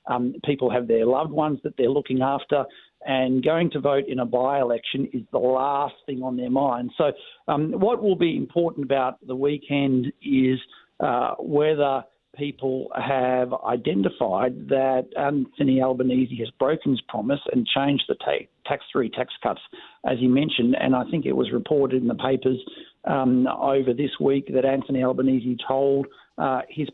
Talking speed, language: 165 wpm, English